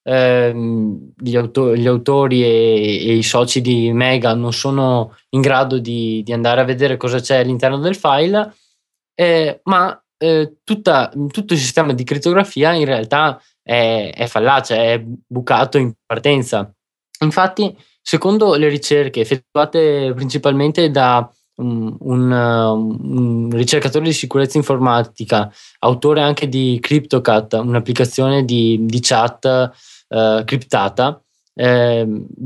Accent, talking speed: native, 115 wpm